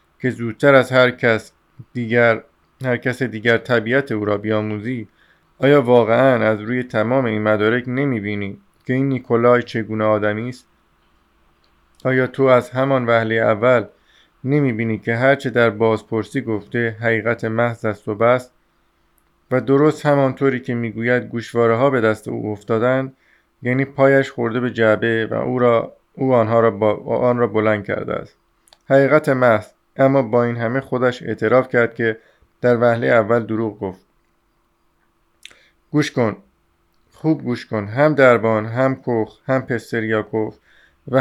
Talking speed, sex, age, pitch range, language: 145 wpm, male, 50-69, 110-130 Hz, Persian